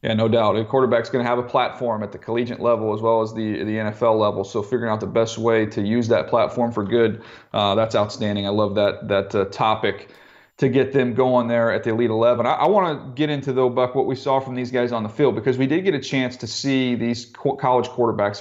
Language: English